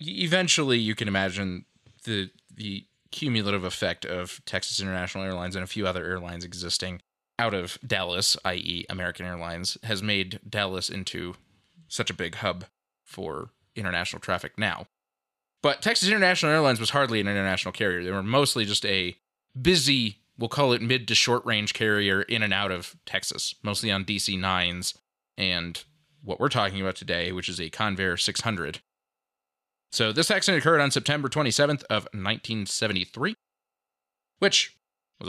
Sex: male